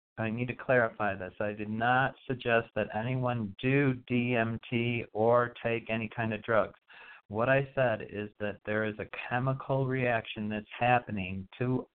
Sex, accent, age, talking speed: male, American, 50-69, 160 wpm